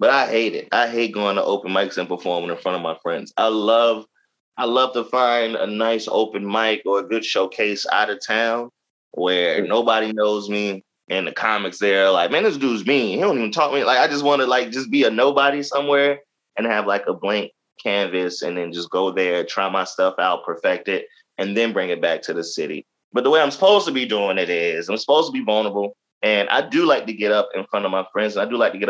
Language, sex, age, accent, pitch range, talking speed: English, male, 20-39, American, 100-135 Hz, 255 wpm